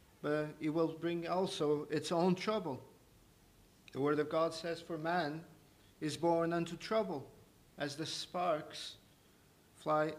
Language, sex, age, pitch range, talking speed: English, male, 50-69, 135-160 Hz, 135 wpm